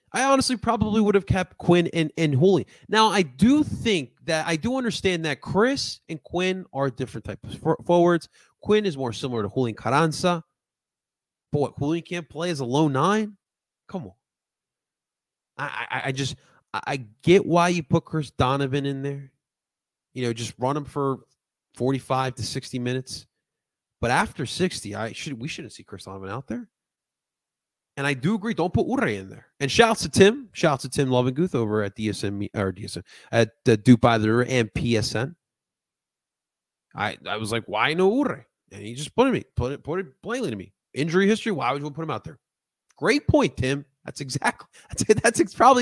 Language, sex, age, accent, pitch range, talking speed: English, male, 30-49, American, 120-175 Hz, 190 wpm